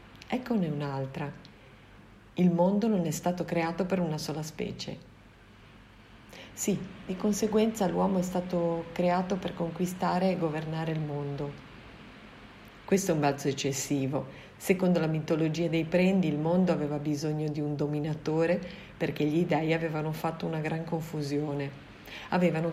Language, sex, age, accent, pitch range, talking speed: Italian, female, 50-69, native, 150-180 Hz, 135 wpm